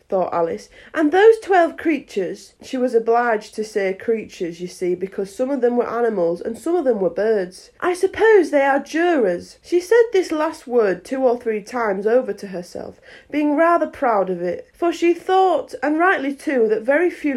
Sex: female